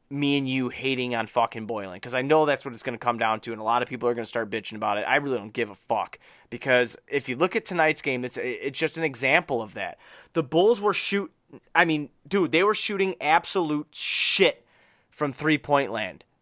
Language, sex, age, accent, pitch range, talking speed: English, male, 30-49, American, 135-200 Hz, 240 wpm